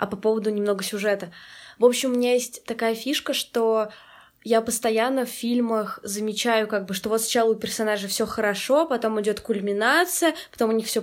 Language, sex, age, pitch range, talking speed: Russian, female, 20-39, 205-245 Hz, 185 wpm